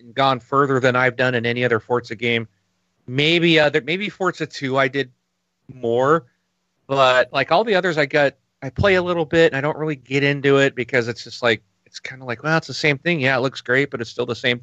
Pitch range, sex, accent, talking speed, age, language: 120-155 Hz, male, American, 250 wpm, 40-59, English